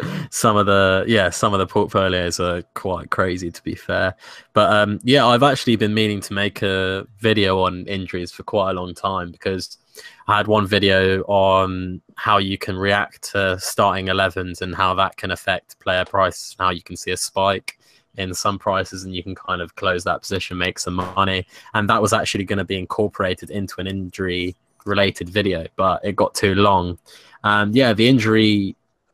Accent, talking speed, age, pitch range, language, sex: British, 195 wpm, 20-39, 95-105 Hz, English, male